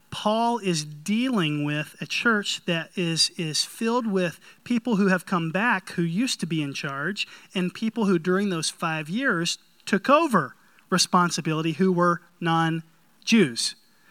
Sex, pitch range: male, 165-210 Hz